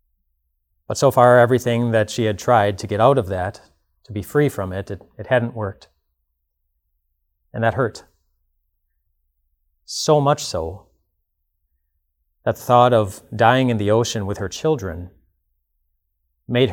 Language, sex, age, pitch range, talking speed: English, male, 30-49, 75-120 Hz, 140 wpm